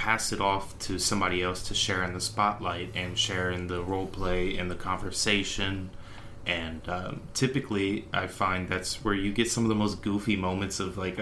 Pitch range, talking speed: 90-100 Hz, 200 wpm